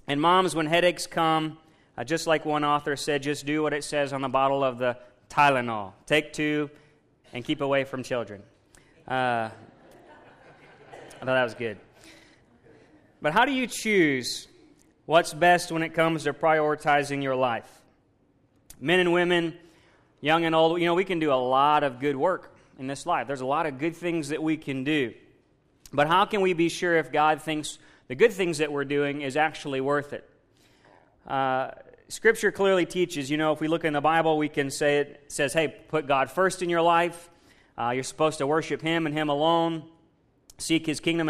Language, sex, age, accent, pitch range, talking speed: English, male, 30-49, American, 140-165 Hz, 195 wpm